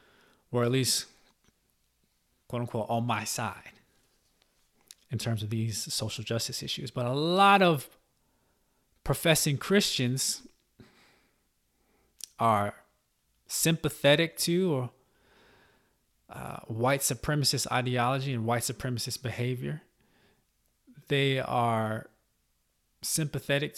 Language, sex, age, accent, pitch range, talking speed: English, male, 20-39, American, 110-130 Hz, 90 wpm